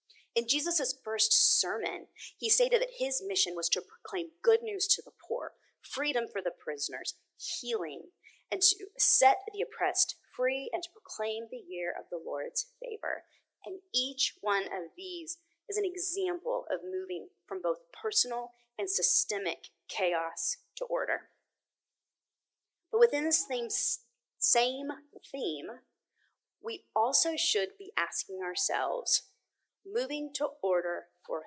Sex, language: female, English